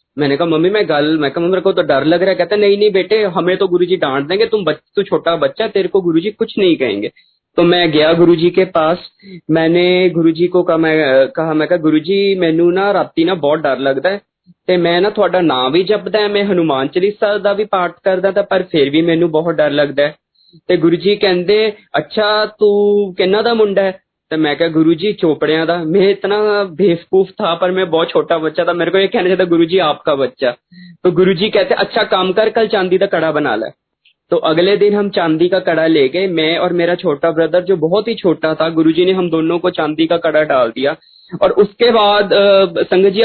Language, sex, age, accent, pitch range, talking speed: Hindi, male, 20-39, native, 165-205 Hz, 185 wpm